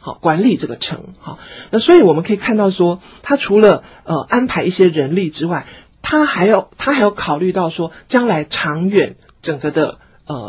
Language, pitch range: Chinese, 155-215 Hz